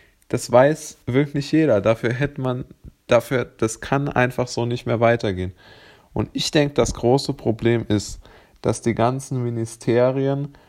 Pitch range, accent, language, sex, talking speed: 110-130 Hz, German, German, male, 145 wpm